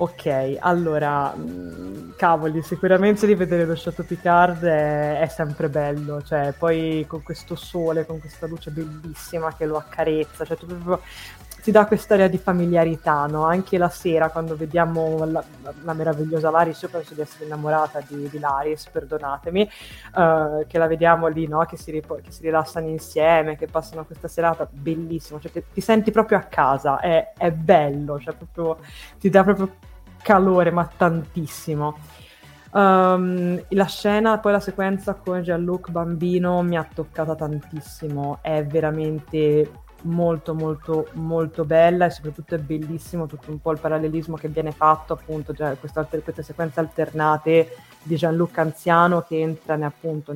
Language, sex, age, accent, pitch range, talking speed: Italian, female, 20-39, native, 155-175 Hz, 155 wpm